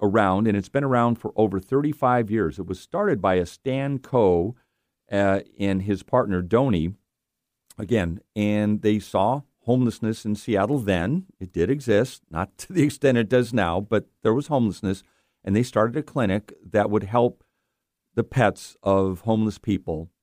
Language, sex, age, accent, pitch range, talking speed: English, male, 50-69, American, 95-115 Hz, 165 wpm